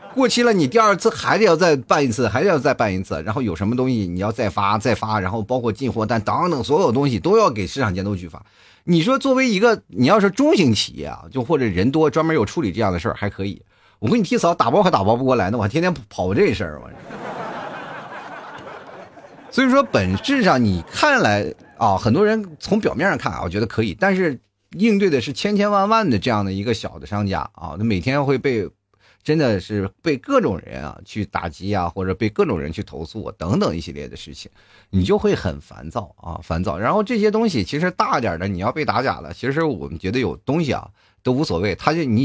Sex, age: male, 30-49